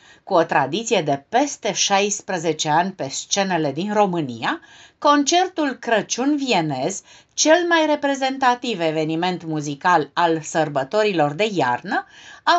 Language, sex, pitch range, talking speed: Romanian, female, 180-285 Hz, 110 wpm